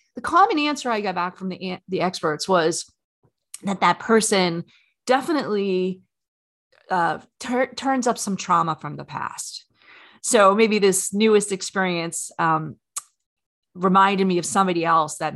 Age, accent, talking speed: 30-49, American, 140 wpm